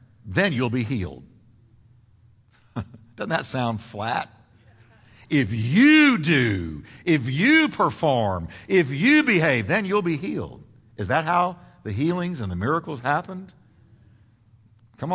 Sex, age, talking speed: male, 50-69, 125 wpm